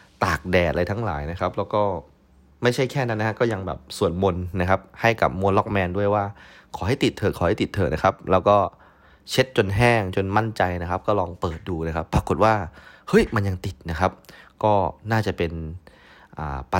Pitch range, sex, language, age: 85-105 Hz, male, Thai, 20-39